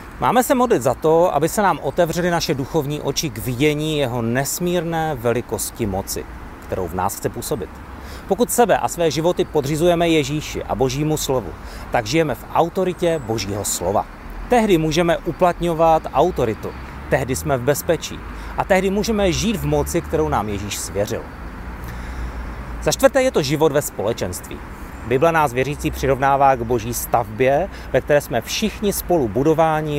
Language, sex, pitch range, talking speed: Czech, male, 110-165 Hz, 155 wpm